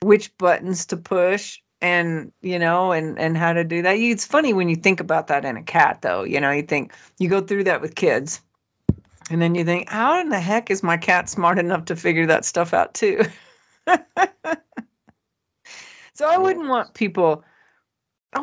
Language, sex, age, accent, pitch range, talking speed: English, female, 40-59, American, 165-215 Hz, 190 wpm